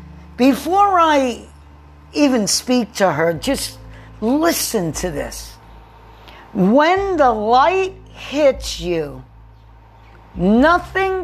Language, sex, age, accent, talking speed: English, female, 50-69, American, 85 wpm